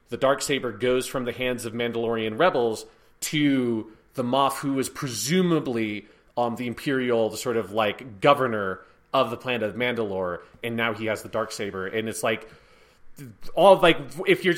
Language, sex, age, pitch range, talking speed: English, male, 30-49, 125-165 Hz, 170 wpm